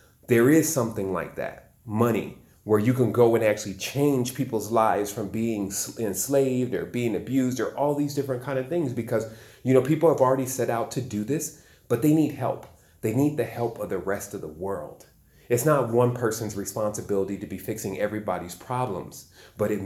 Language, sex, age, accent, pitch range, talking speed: English, male, 30-49, American, 105-130 Hz, 195 wpm